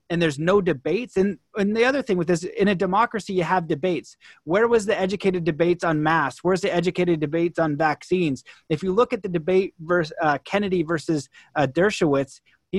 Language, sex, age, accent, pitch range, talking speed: English, male, 30-49, American, 160-195 Hz, 200 wpm